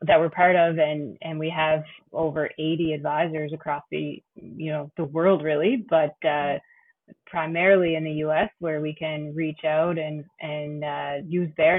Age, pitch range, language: 20-39, 150-175 Hz, English